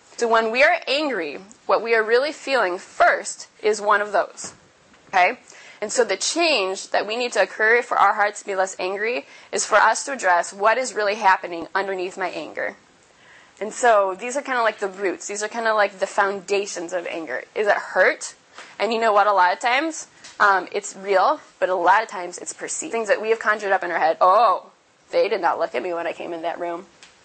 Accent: American